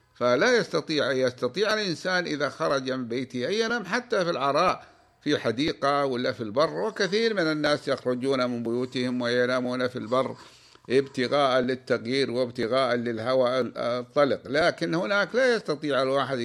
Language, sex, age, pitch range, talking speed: Arabic, male, 50-69, 130-165 Hz, 135 wpm